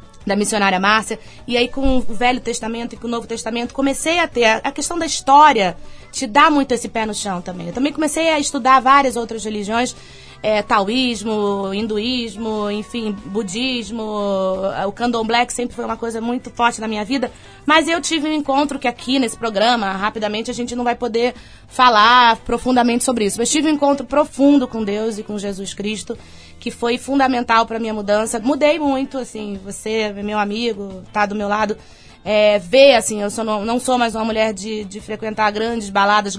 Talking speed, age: 190 wpm, 20-39